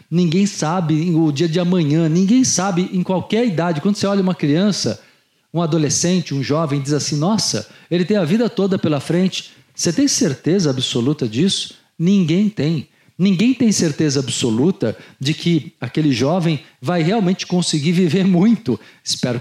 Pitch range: 145-190 Hz